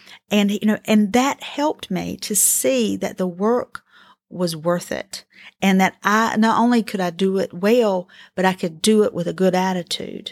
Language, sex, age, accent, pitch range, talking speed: English, female, 40-59, American, 175-215 Hz, 200 wpm